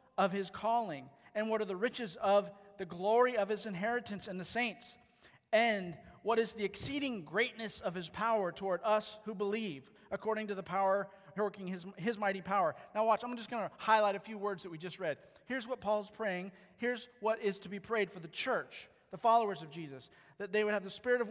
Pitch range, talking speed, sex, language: 145-225 Hz, 215 wpm, male, English